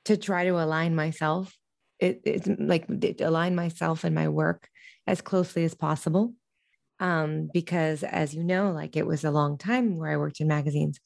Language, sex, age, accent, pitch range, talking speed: English, female, 20-39, American, 155-195 Hz, 175 wpm